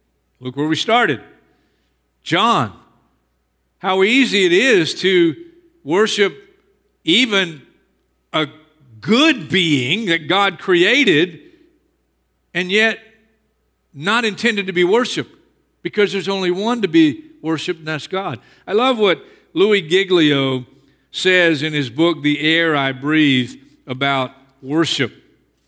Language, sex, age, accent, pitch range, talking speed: English, male, 50-69, American, 150-225 Hz, 115 wpm